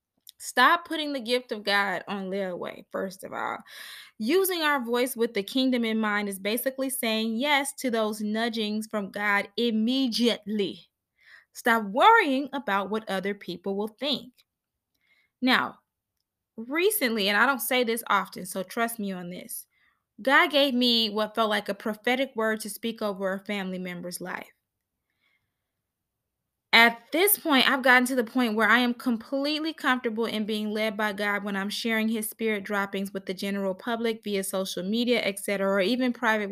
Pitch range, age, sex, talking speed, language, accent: 200-255 Hz, 20-39, female, 170 wpm, English, American